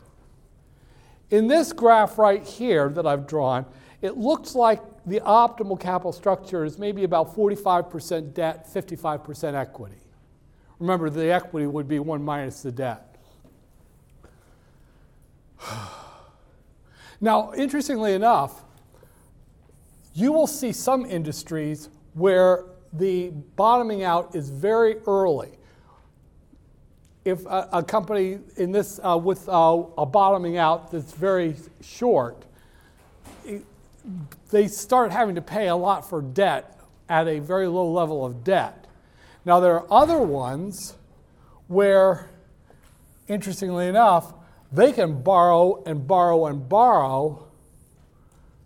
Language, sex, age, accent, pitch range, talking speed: English, male, 60-79, American, 155-200 Hz, 115 wpm